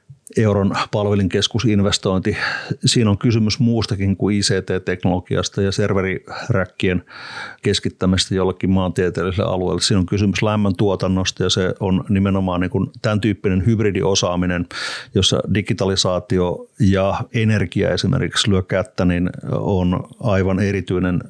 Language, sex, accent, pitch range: Finnish, male, native, 95-105 Hz